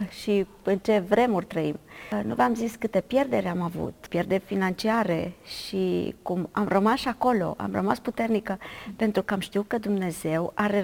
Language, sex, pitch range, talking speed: Romanian, female, 195-255 Hz, 165 wpm